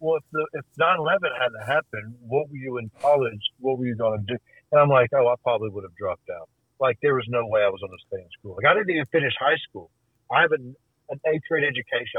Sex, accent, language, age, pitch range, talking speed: male, American, English, 50-69, 115-135 Hz, 265 wpm